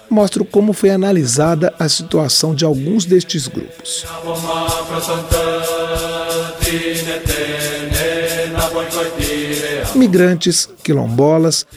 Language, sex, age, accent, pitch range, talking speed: Portuguese, male, 40-59, Brazilian, 145-175 Hz, 60 wpm